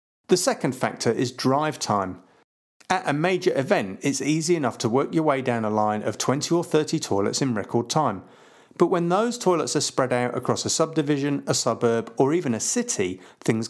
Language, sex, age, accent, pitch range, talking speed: English, male, 50-69, British, 120-165 Hz, 195 wpm